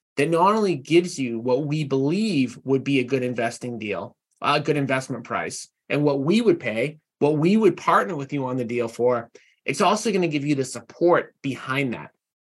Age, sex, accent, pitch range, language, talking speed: 30-49, male, American, 135-170 Hz, English, 205 wpm